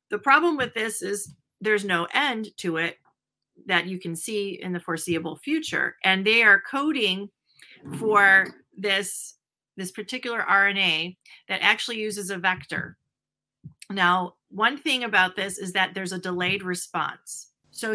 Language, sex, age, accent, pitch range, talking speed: English, female, 40-59, American, 180-225 Hz, 145 wpm